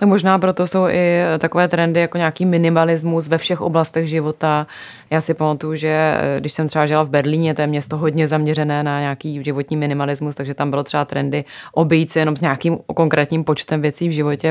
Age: 20-39